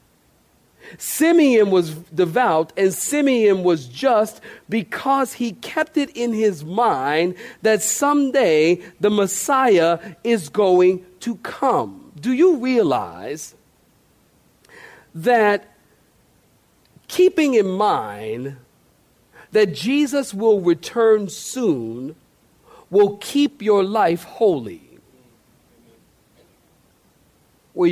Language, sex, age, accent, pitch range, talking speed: English, male, 50-69, American, 175-255 Hz, 85 wpm